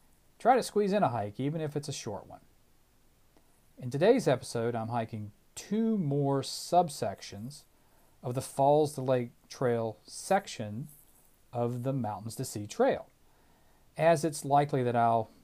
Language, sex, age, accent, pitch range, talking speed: English, male, 40-59, American, 115-145 Hz, 150 wpm